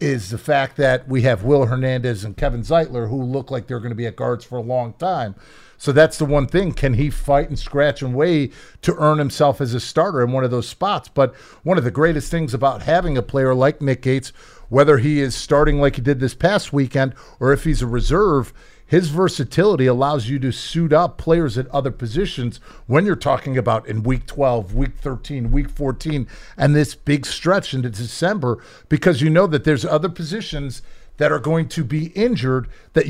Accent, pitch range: American, 130-155 Hz